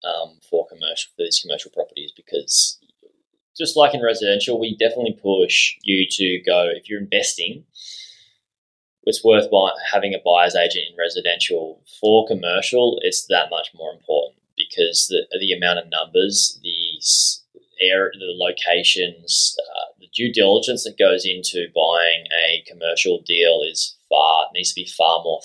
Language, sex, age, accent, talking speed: English, male, 10-29, Australian, 150 wpm